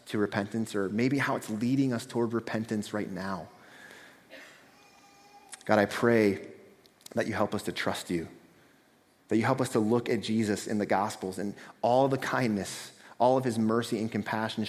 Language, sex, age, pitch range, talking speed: English, male, 30-49, 100-120 Hz, 175 wpm